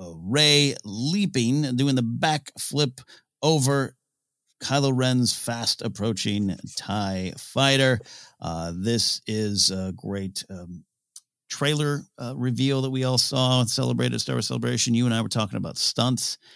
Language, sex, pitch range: English, male, 100-135 Hz